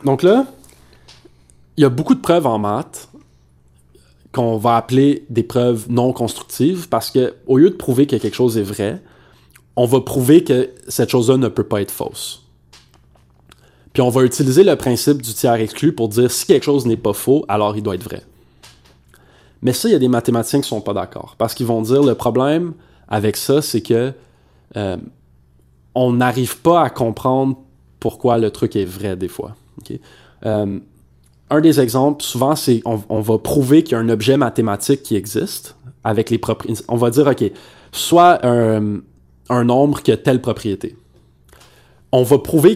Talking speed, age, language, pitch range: 180 wpm, 20-39, French, 105-135 Hz